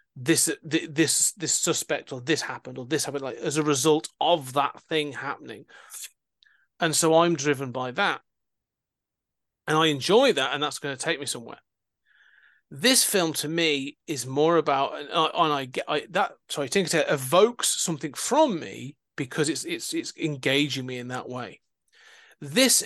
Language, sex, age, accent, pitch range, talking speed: English, male, 30-49, British, 135-170 Hz, 175 wpm